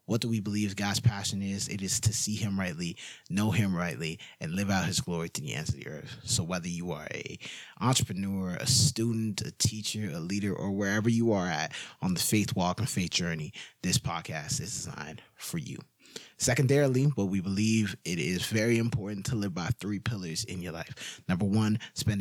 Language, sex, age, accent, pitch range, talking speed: English, male, 20-39, American, 100-125 Hz, 205 wpm